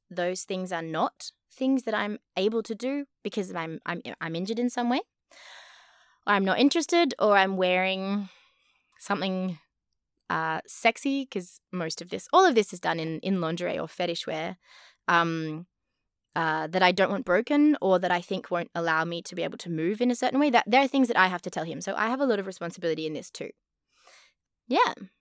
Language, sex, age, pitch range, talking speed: English, female, 20-39, 180-235 Hz, 205 wpm